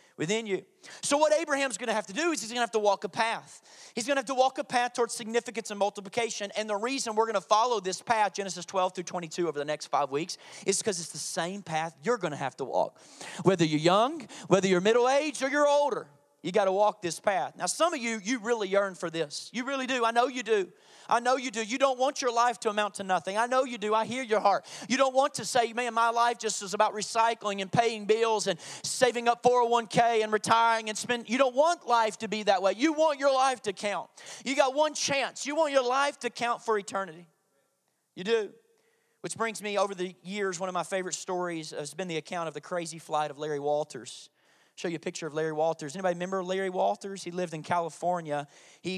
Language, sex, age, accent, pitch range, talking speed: English, male, 40-59, American, 170-235 Hz, 245 wpm